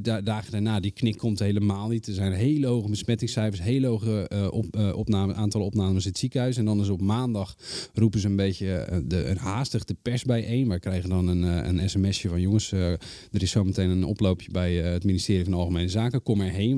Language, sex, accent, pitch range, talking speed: Dutch, male, Dutch, 95-115 Hz, 230 wpm